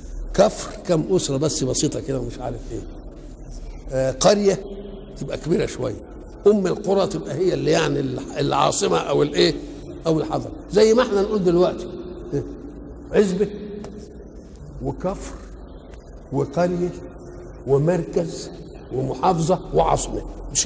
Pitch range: 145-200 Hz